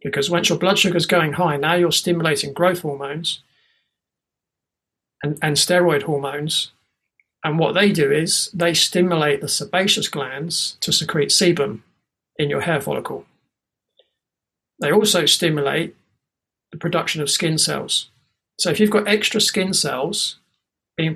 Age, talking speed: 40-59, 140 wpm